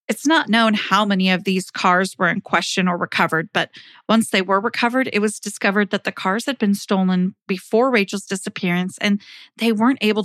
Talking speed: 200 wpm